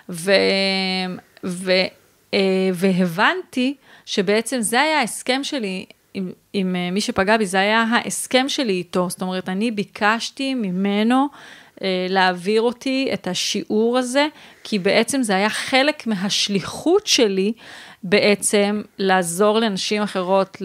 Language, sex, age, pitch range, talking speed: Hebrew, female, 30-49, 190-225 Hz, 115 wpm